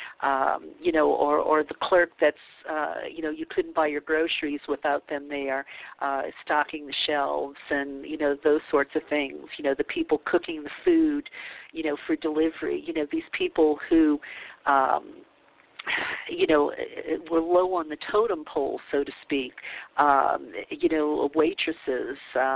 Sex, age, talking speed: female, 50-69, 165 wpm